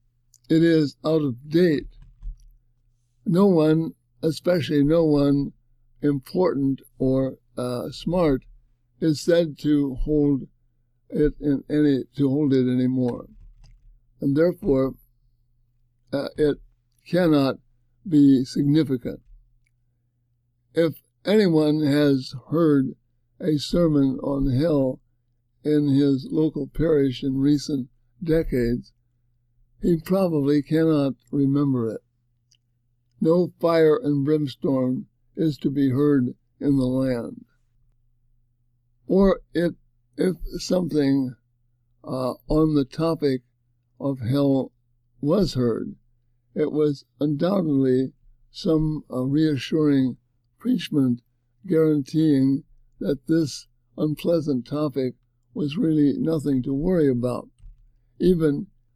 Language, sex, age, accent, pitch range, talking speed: English, male, 60-79, American, 120-150 Hz, 95 wpm